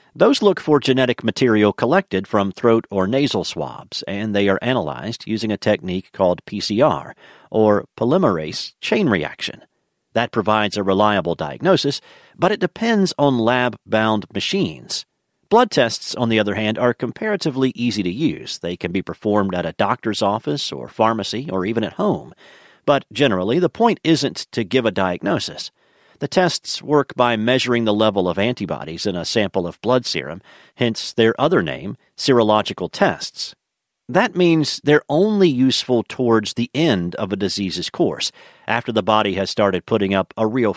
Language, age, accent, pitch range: English, 40-59, American, 100-125 Hz